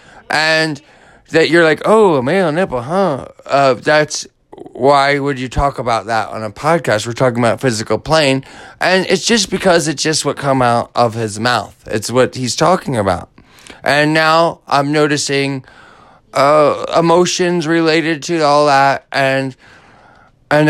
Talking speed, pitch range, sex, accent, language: 155 wpm, 130-170 Hz, male, American, English